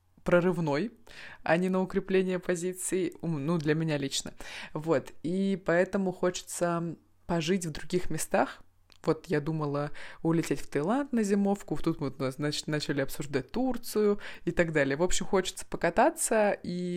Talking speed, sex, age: 140 wpm, female, 20-39